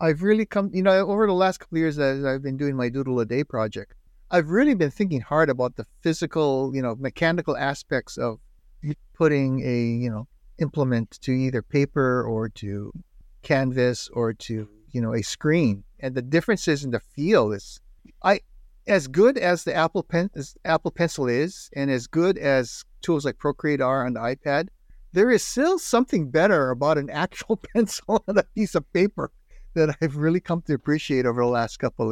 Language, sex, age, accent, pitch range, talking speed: English, male, 50-69, American, 125-175 Hz, 195 wpm